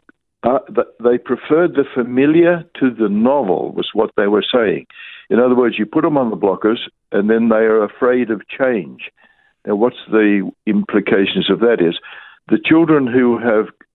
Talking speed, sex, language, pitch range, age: 170 wpm, male, English, 105-145 Hz, 60-79